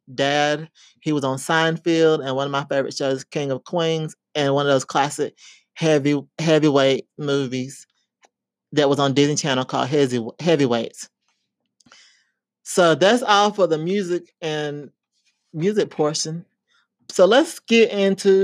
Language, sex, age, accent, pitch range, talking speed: English, male, 30-49, American, 140-180 Hz, 140 wpm